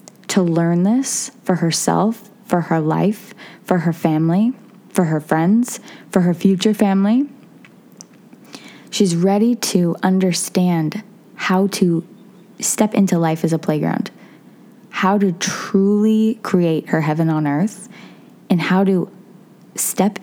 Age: 20-39